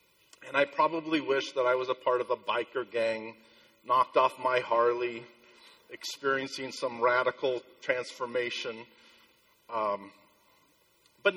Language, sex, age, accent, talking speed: English, male, 50-69, American, 120 wpm